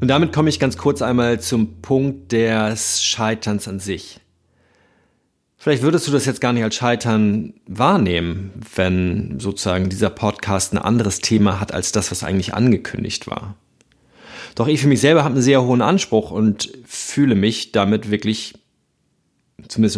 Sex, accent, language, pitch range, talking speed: male, German, German, 100-120 Hz, 160 wpm